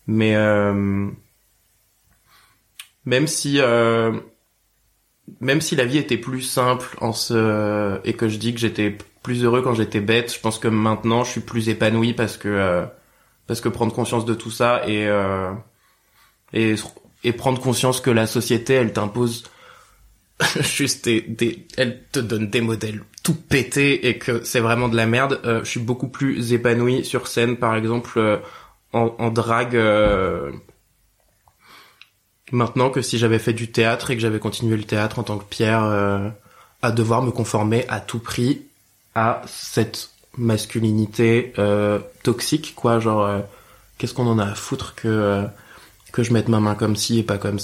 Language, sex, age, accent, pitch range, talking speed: French, male, 20-39, French, 105-120 Hz, 175 wpm